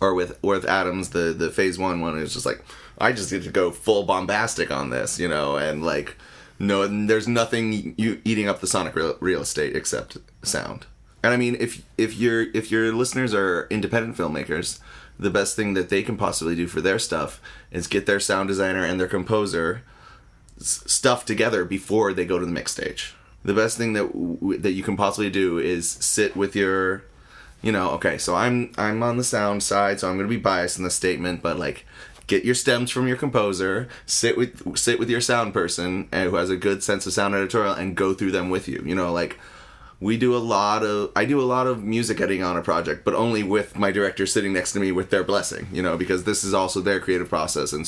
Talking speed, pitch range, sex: 225 wpm, 95-110 Hz, male